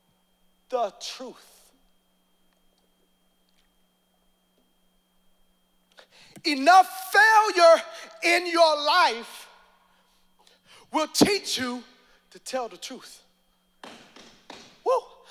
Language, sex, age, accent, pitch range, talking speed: English, male, 40-59, American, 260-360 Hz, 60 wpm